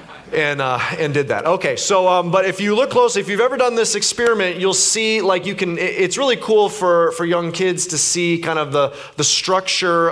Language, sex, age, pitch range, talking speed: English, male, 30-49, 155-190 Hz, 225 wpm